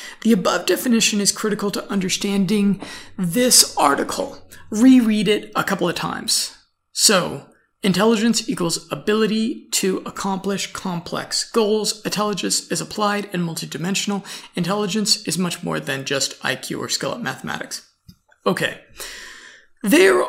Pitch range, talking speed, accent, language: 185-215 Hz, 120 wpm, American, English